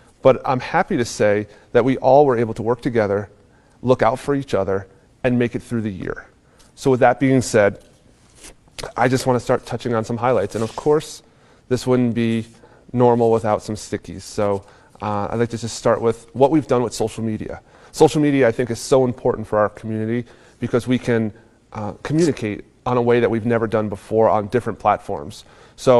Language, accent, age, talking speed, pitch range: English, American, 30-49, 205 wpm, 110-130 Hz